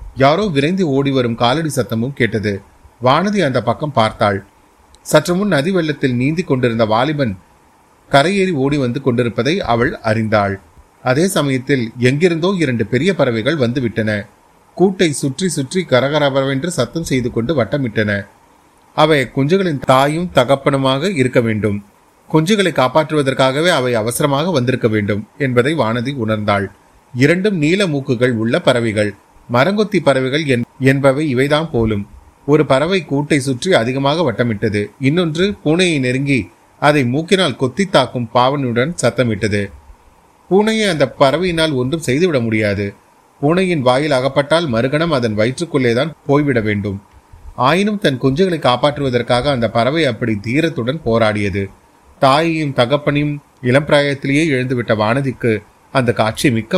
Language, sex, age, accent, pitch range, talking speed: Tamil, male, 30-49, native, 115-155 Hz, 115 wpm